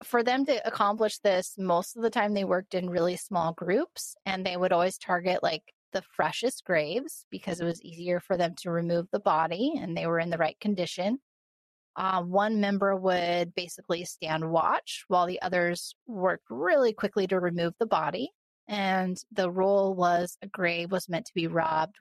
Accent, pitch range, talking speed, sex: American, 175-210 Hz, 190 wpm, female